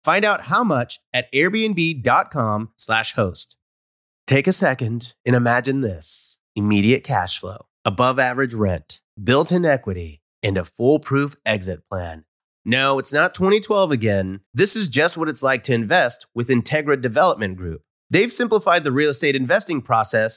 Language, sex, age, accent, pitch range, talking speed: English, male, 30-49, American, 120-175 Hz, 155 wpm